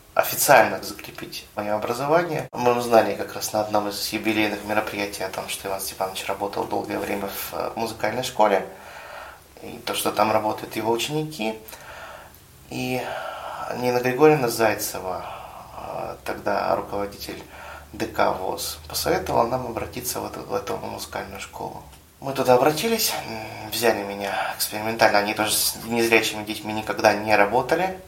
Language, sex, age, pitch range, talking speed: Russian, male, 20-39, 105-125 Hz, 130 wpm